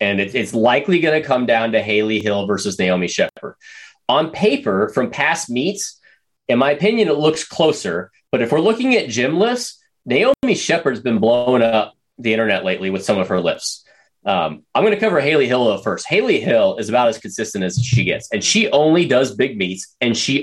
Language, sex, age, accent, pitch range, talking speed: English, male, 30-49, American, 115-160 Hz, 205 wpm